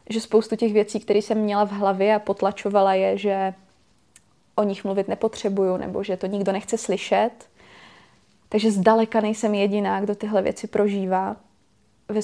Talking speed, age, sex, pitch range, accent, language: 155 wpm, 20-39, female, 200-215 Hz, native, Czech